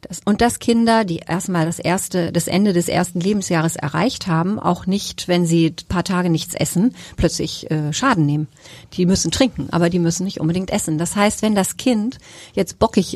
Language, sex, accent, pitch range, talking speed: German, female, German, 175-215 Hz, 200 wpm